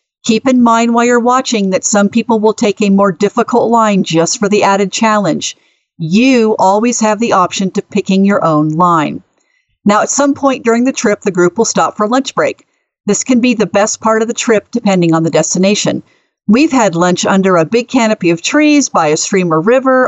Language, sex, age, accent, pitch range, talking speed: English, female, 50-69, American, 195-235 Hz, 210 wpm